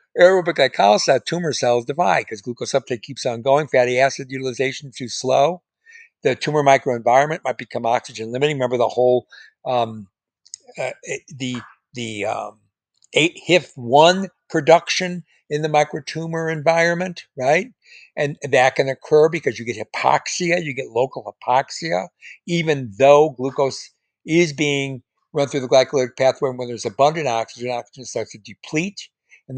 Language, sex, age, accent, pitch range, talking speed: English, male, 60-79, American, 120-160 Hz, 145 wpm